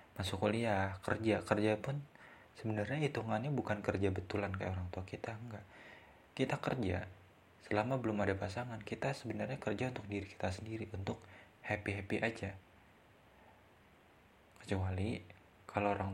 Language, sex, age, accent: Indonesian, male, 20-39, native